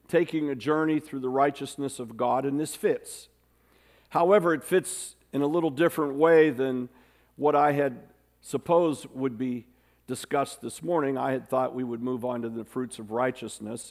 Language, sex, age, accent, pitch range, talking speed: English, male, 50-69, American, 115-165 Hz, 175 wpm